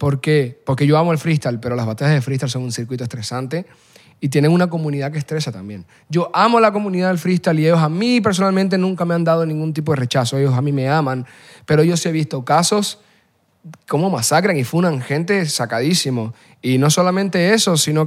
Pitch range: 140-195 Hz